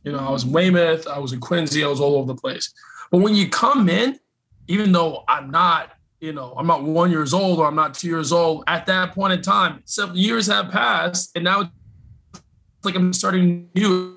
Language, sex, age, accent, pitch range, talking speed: English, male, 20-39, American, 150-195 Hz, 225 wpm